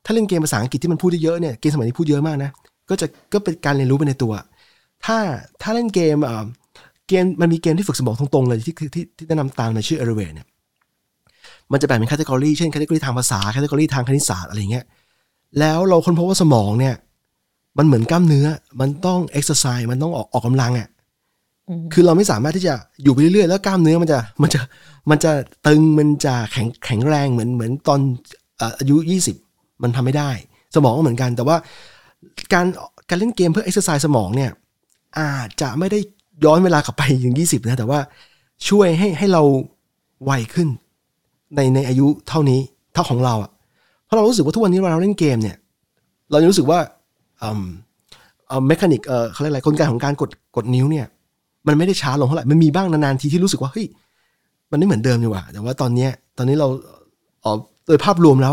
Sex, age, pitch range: male, 20-39, 125-165 Hz